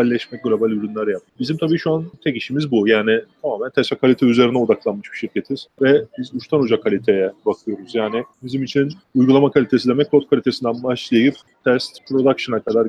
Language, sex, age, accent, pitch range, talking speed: Turkish, male, 30-49, native, 120-140 Hz, 170 wpm